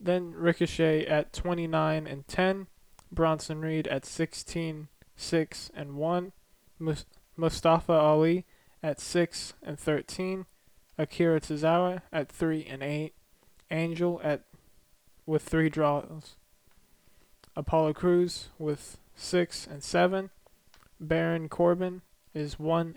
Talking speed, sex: 105 wpm, male